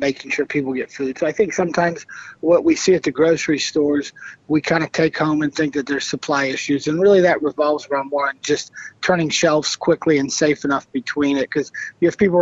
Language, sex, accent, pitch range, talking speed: English, male, American, 140-165 Hz, 220 wpm